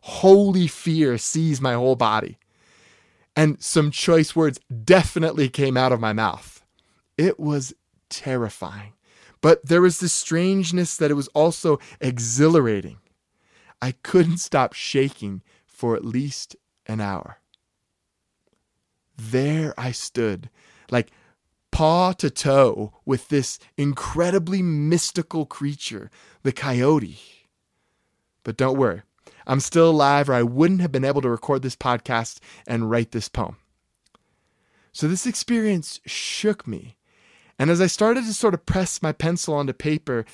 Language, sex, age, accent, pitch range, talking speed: English, male, 20-39, American, 130-175 Hz, 130 wpm